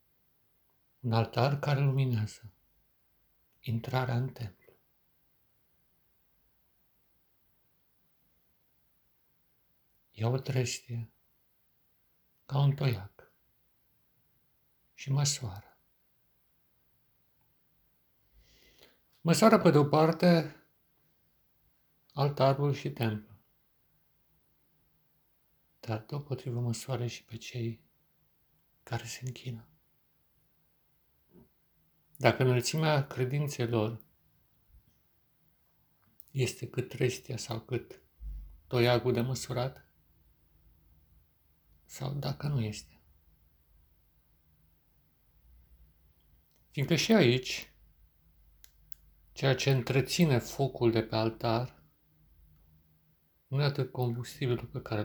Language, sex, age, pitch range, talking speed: Romanian, male, 60-79, 80-135 Hz, 70 wpm